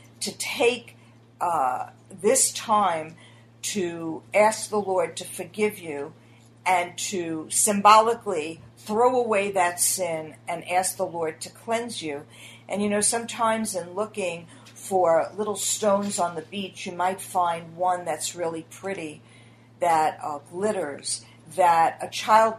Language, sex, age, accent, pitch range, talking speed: English, female, 50-69, American, 160-210 Hz, 135 wpm